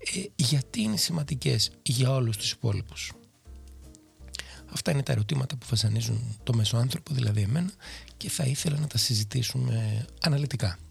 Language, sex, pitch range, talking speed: Greek, male, 110-150 Hz, 140 wpm